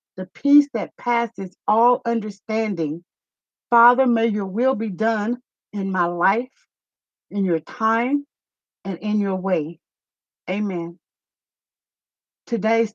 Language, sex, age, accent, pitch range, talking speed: English, female, 50-69, American, 200-265 Hz, 110 wpm